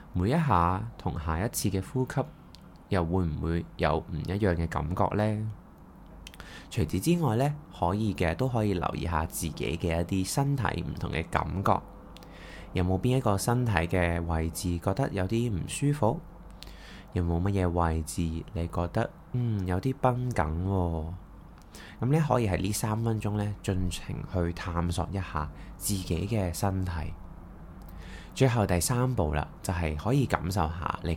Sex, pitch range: male, 85-115 Hz